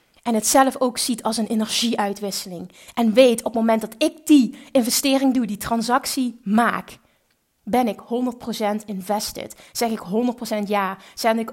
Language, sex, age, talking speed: Dutch, female, 30-49, 160 wpm